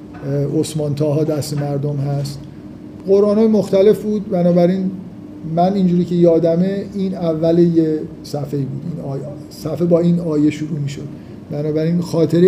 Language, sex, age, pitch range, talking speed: Persian, male, 50-69, 160-200 Hz, 140 wpm